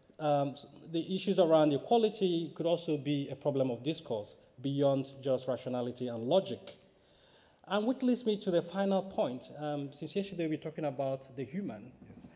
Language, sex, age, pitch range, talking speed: English, male, 30-49, 130-170 Hz, 170 wpm